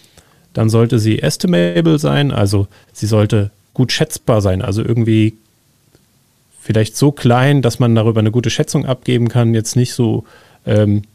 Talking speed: 150 wpm